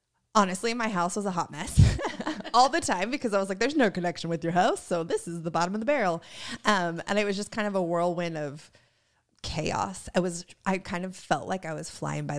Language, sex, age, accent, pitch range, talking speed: English, female, 20-39, American, 155-190 Hz, 240 wpm